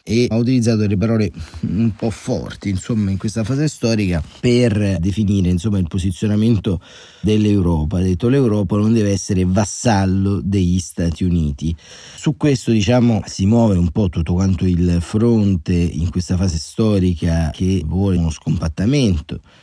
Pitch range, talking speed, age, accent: 85-105 Hz, 145 wpm, 30-49, native